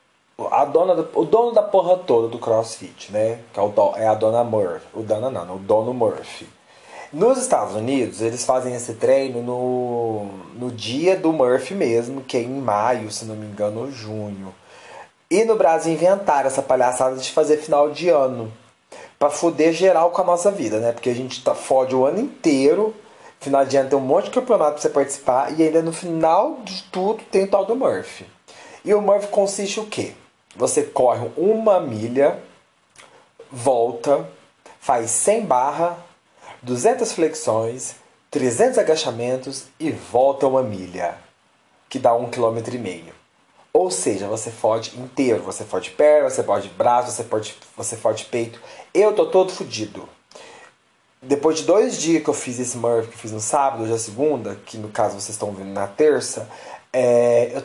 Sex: male